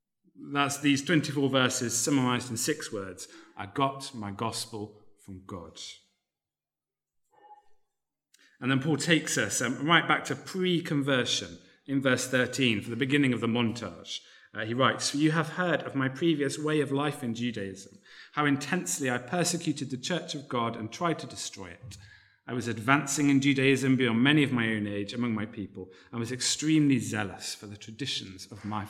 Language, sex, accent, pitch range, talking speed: English, male, British, 110-145 Hz, 170 wpm